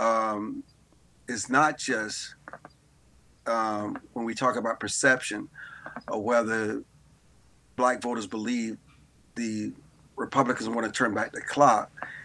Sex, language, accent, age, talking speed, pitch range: male, English, American, 40-59, 115 wpm, 120-140 Hz